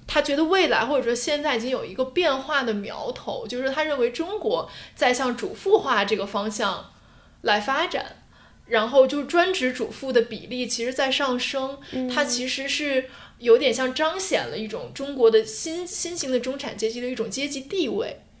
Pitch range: 245-350 Hz